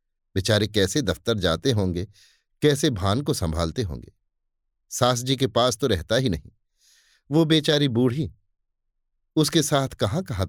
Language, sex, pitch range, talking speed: Hindi, male, 100-150 Hz, 145 wpm